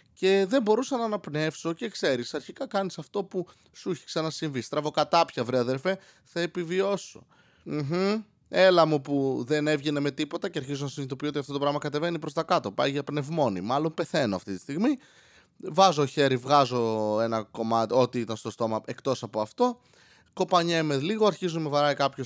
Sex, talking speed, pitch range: male, 185 wpm, 130-180 Hz